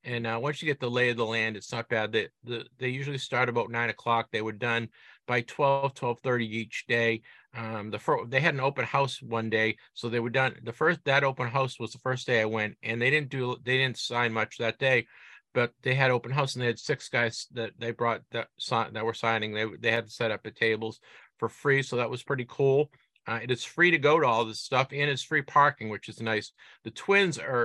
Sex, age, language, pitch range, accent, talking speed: male, 50-69, English, 115-130 Hz, American, 255 wpm